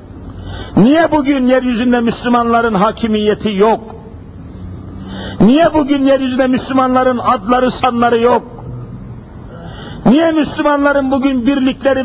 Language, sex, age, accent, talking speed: Turkish, male, 60-79, native, 85 wpm